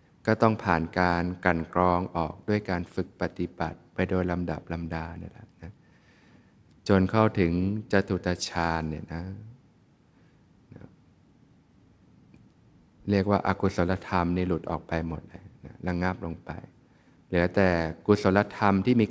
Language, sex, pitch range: Thai, male, 85-100 Hz